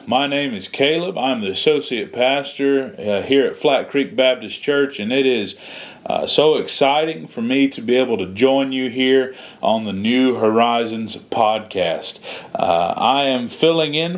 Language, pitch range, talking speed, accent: English, 115-140 Hz, 170 wpm, American